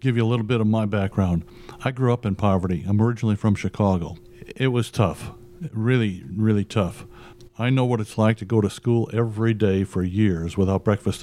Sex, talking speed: male, 205 wpm